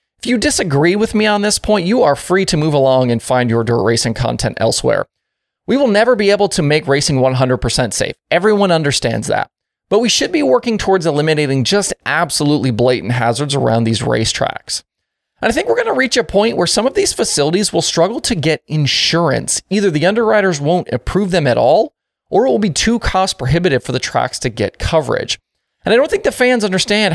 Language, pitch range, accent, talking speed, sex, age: English, 130-200 Hz, American, 210 wpm, male, 30-49